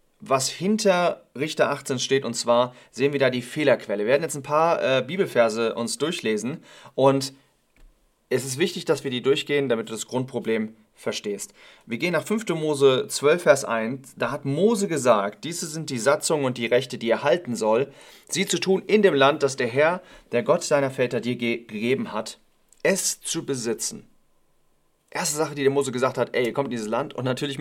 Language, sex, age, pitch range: English, male, 30-49, 115-145 Hz